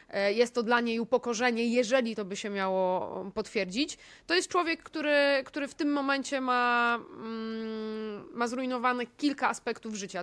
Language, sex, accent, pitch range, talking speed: Polish, female, native, 215-260 Hz, 145 wpm